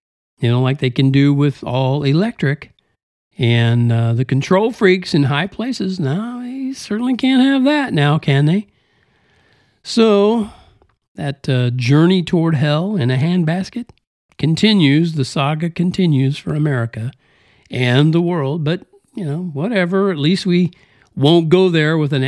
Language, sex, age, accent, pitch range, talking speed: English, male, 50-69, American, 130-190 Hz, 150 wpm